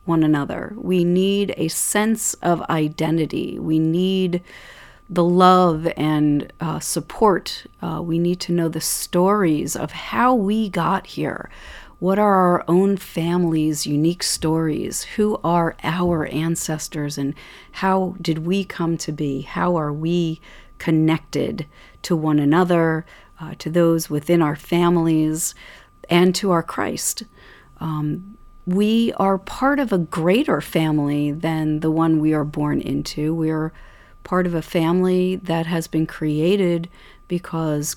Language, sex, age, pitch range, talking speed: English, female, 40-59, 155-185 Hz, 135 wpm